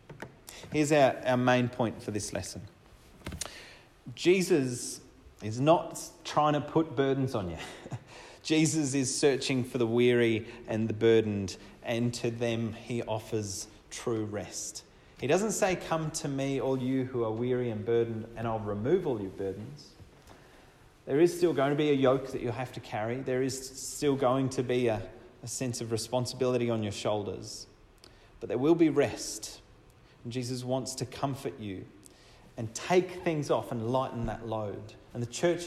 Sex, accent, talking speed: male, Australian, 170 wpm